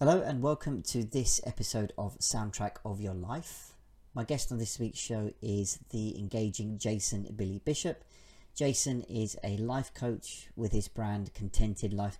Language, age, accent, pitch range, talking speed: English, 40-59, British, 100-120 Hz, 160 wpm